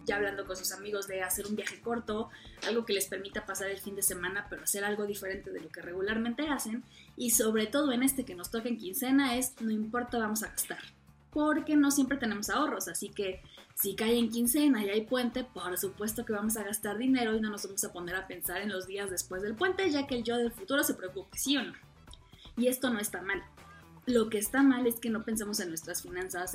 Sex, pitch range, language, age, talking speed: female, 200-255 Hz, Spanish, 20-39, 240 wpm